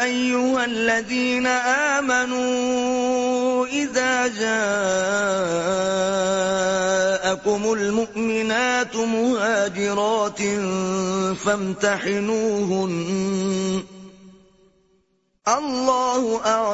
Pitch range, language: 190-225 Hz, Urdu